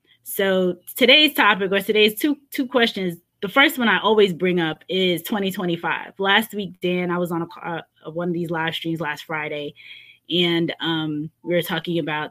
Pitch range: 155-185 Hz